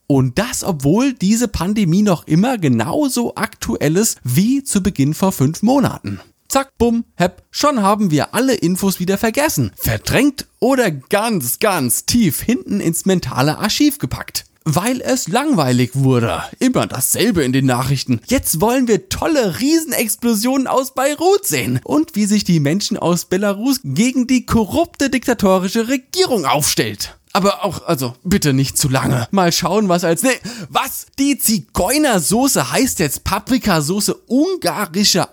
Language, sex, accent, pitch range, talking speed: German, male, German, 150-240 Hz, 145 wpm